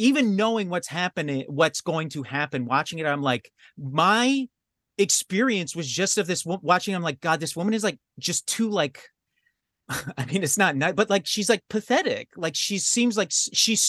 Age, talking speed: 30-49, 190 wpm